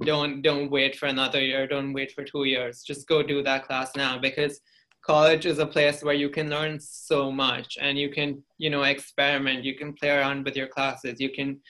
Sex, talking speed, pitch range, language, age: male, 220 wpm, 135-150 Hz, English, 20-39